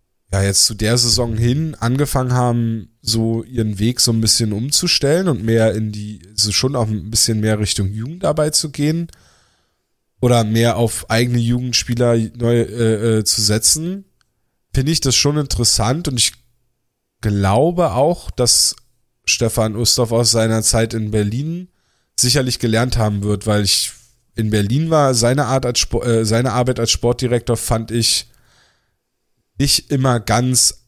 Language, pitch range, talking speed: German, 110-130 Hz, 155 wpm